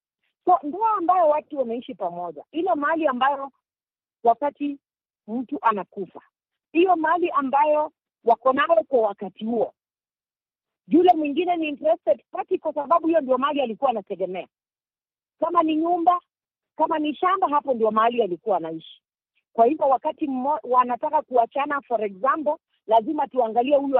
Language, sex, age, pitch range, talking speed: Swahili, female, 50-69, 235-315 Hz, 135 wpm